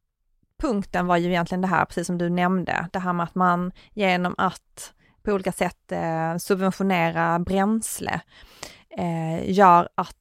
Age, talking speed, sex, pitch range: 30-49, 145 wpm, female, 180-225 Hz